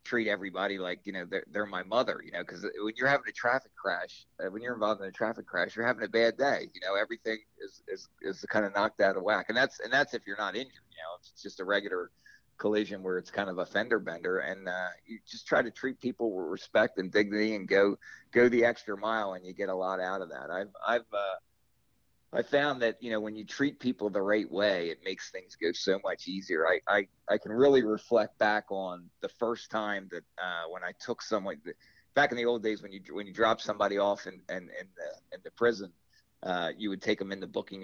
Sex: male